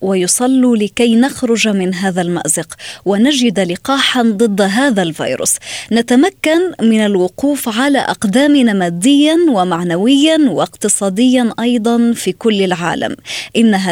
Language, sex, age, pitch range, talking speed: Arabic, female, 20-39, 180-240 Hz, 105 wpm